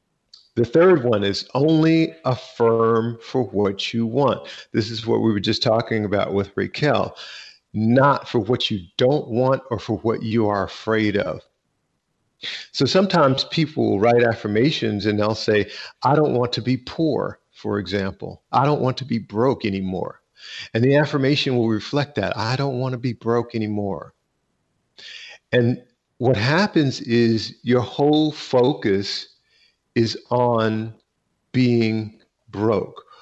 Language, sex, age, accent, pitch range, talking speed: English, male, 50-69, American, 110-135 Hz, 145 wpm